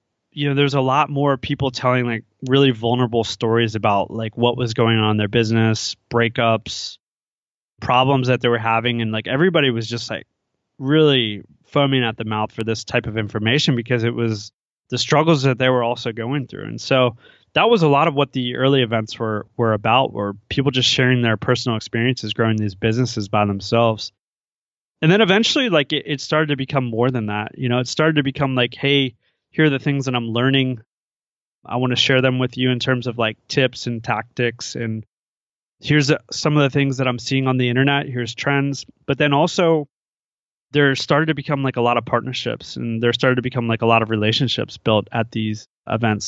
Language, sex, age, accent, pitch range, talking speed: English, male, 20-39, American, 115-135 Hz, 210 wpm